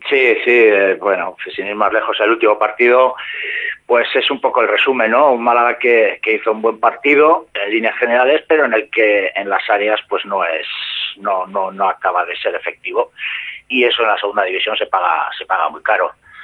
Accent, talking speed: Spanish, 210 wpm